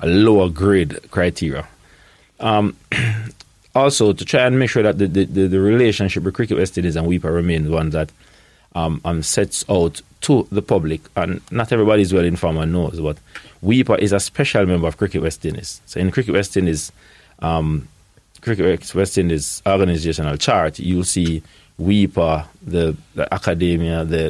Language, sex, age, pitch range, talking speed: English, male, 30-49, 80-100 Hz, 170 wpm